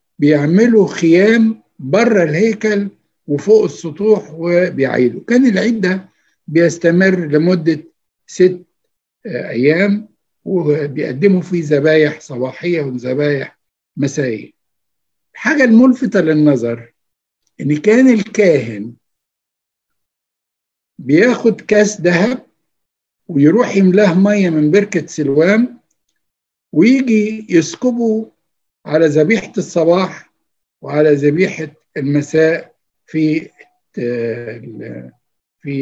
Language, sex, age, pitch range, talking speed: Arabic, male, 60-79, 150-215 Hz, 75 wpm